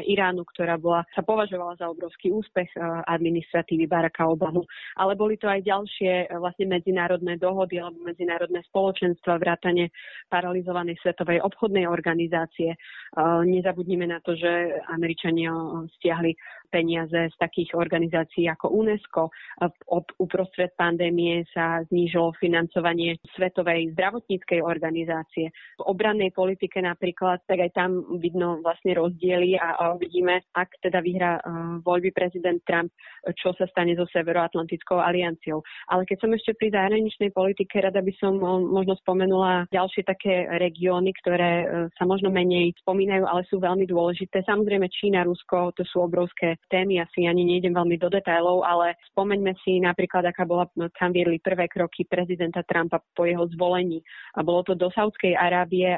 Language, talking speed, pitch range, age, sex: Slovak, 135 wpm, 170-185 Hz, 30-49, female